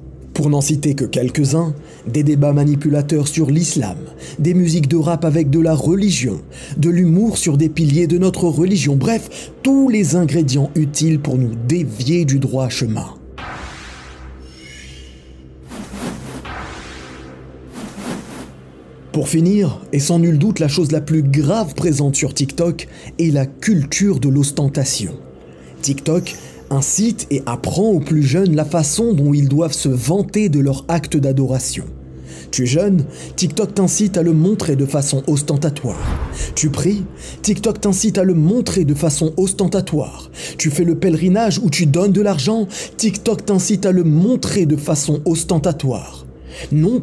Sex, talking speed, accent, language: male, 145 wpm, French, French